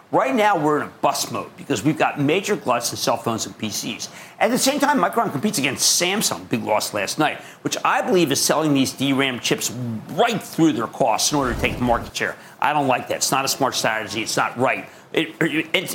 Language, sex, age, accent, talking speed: English, male, 50-69, American, 235 wpm